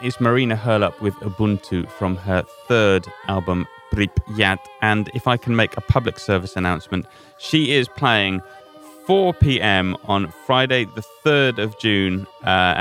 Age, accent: 30-49, British